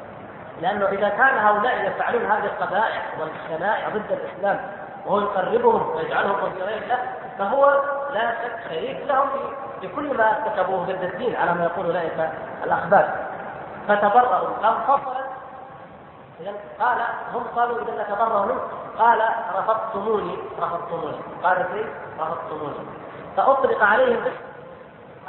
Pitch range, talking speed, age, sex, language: 200-265 Hz, 115 wpm, 20-39, female, Arabic